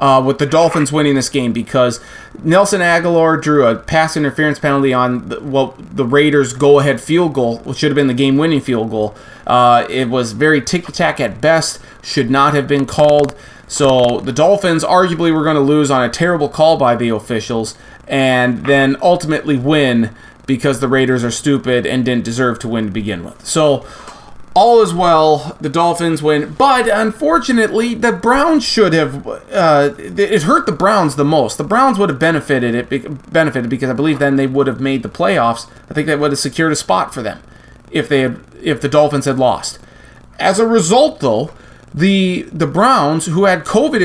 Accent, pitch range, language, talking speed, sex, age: American, 135-170 Hz, English, 190 wpm, male, 30-49